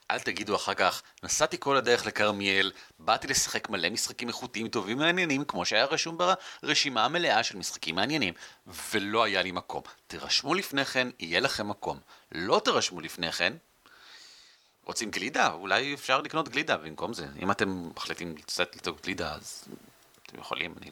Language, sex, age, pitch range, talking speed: Hebrew, male, 40-59, 95-160 Hz, 160 wpm